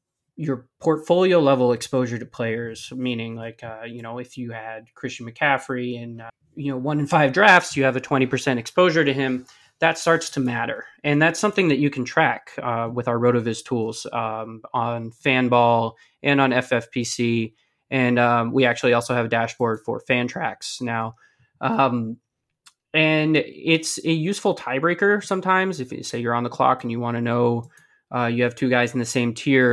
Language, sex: English, male